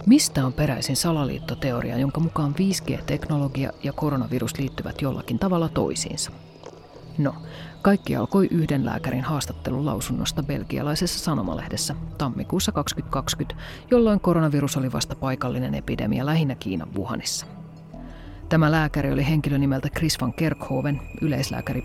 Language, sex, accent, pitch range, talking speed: Finnish, female, native, 130-165 Hz, 115 wpm